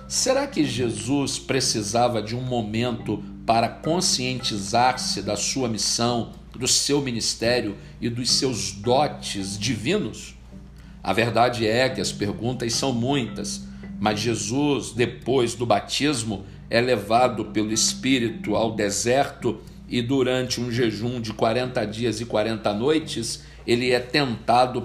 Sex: male